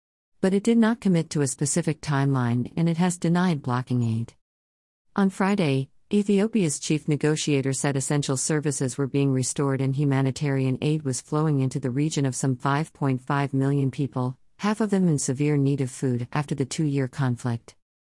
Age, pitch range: 50-69, 130-155 Hz